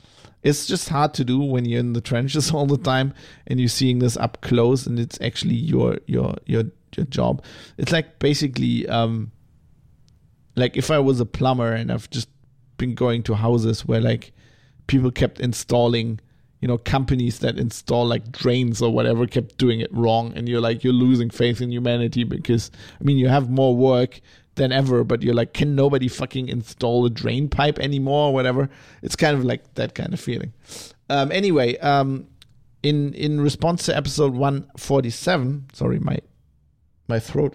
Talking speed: 180 wpm